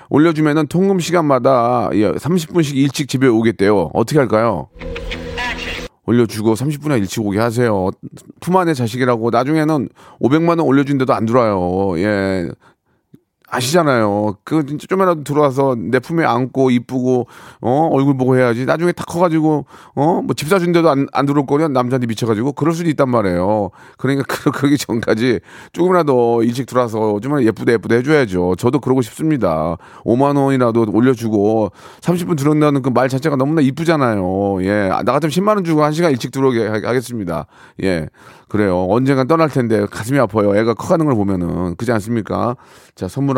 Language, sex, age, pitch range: Korean, male, 40-59, 105-145 Hz